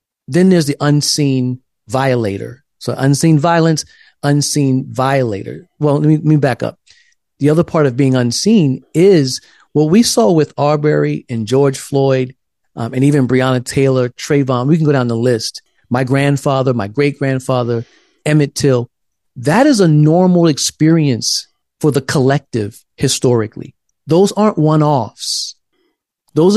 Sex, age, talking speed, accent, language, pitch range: male, 40-59, 140 wpm, American, English, 120-155 Hz